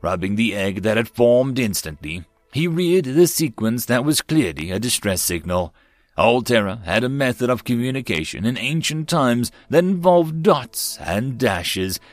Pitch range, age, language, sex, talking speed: 100-140 Hz, 30-49, English, male, 160 wpm